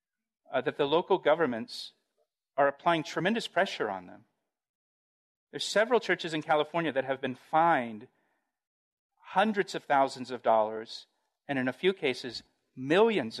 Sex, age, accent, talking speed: male, 40-59, American, 140 wpm